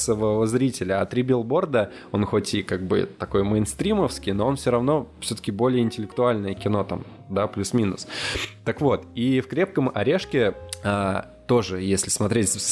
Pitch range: 100-125 Hz